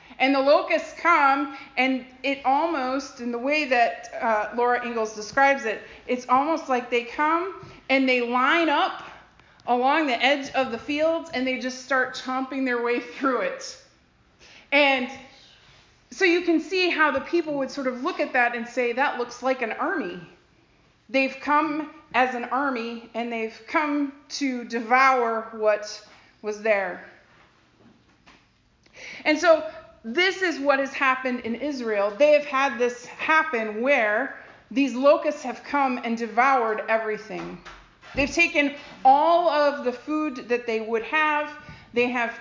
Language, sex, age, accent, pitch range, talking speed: English, female, 30-49, American, 235-295 Hz, 155 wpm